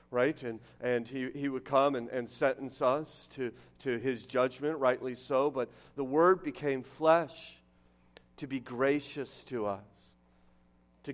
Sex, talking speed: male, 150 wpm